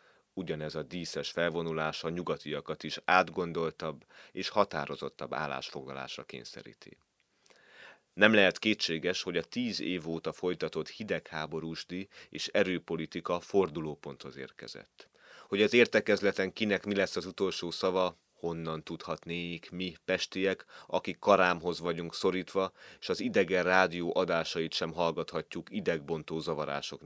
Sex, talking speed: male, 115 wpm